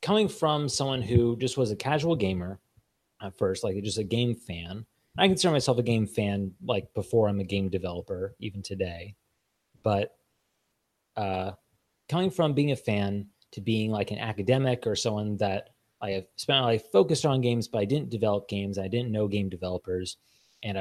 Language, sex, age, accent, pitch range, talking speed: English, male, 30-49, American, 95-120 Hz, 185 wpm